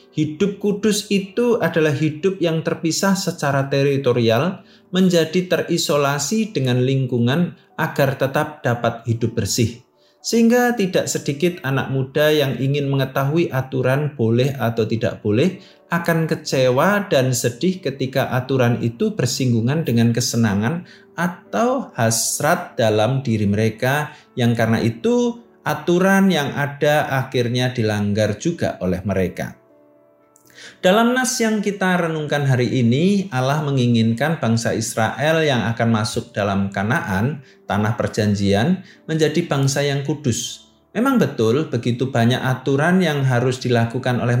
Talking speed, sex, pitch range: 120 wpm, male, 120-170 Hz